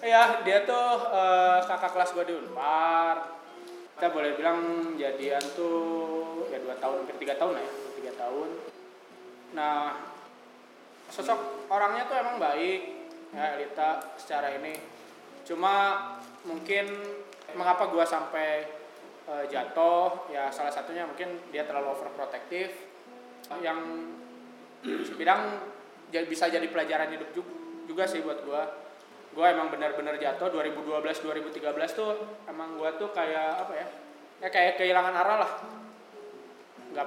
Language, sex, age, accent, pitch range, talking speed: Indonesian, male, 20-39, native, 150-185 Hz, 125 wpm